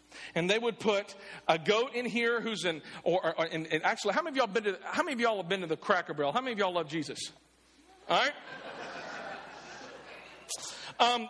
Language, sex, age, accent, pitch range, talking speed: English, male, 40-59, American, 195-250 Hz, 205 wpm